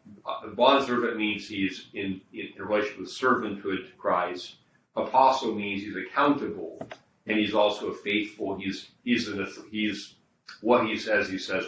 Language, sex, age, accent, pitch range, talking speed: English, male, 40-59, American, 95-110 Hz, 160 wpm